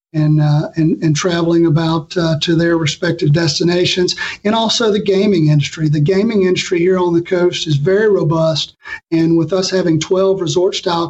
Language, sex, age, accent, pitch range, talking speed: English, male, 40-59, American, 160-190 Hz, 175 wpm